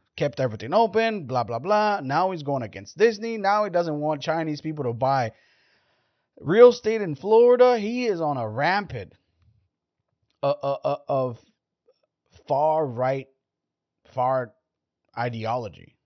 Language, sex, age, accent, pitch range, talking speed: English, male, 30-49, American, 110-145 Hz, 135 wpm